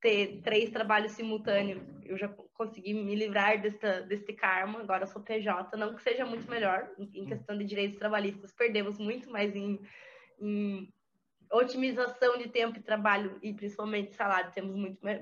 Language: Portuguese